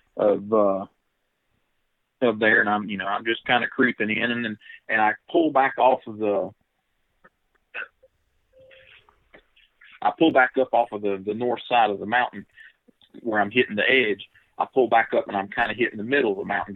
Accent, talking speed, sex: American, 195 wpm, male